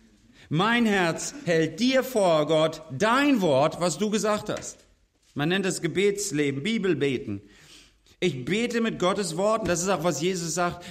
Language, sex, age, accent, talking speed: German, male, 40-59, German, 155 wpm